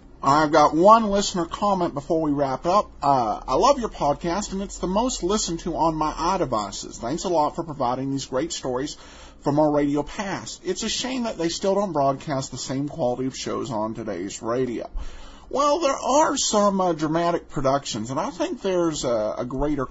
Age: 50-69